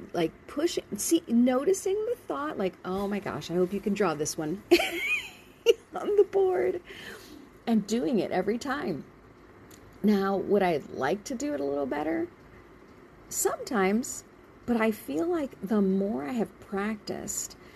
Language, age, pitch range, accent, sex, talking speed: English, 50-69, 170-245 Hz, American, female, 150 wpm